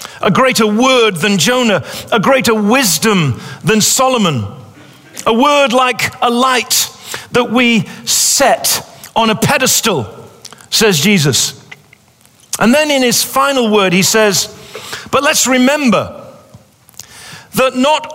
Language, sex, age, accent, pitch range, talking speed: English, male, 50-69, British, 155-250 Hz, 120 wpm